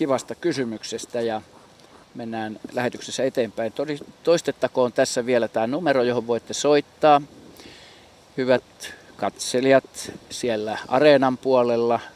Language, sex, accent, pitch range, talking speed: Finnish, male, native, 110-130 Hz, 100 wpm